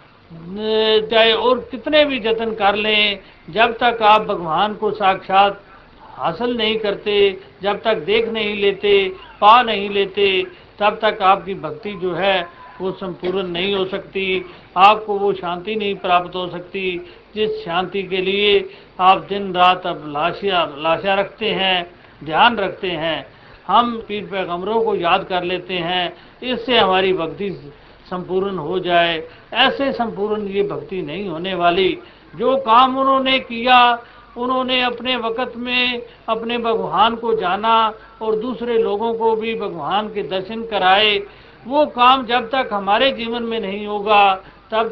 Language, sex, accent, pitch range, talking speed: Hindi, male, native, 190-230 Hz, 145 wpm